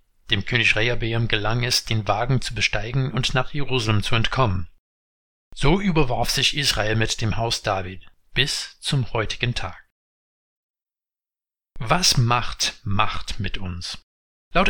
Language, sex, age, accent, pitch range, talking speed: German, male, 60-79, German, 105-135 Hz, 130 wpm